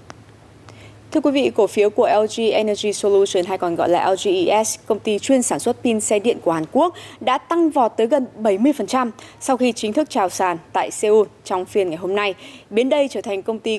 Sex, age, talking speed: female, 20-39, 220 wpm